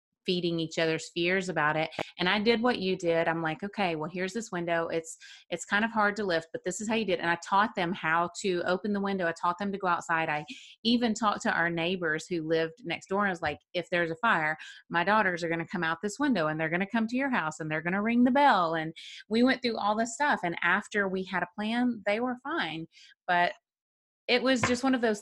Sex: female